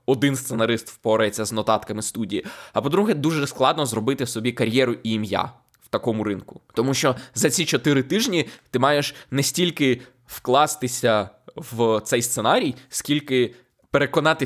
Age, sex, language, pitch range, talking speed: 20-39, male, Ukrainian, 115-140 Hz, 140 wpm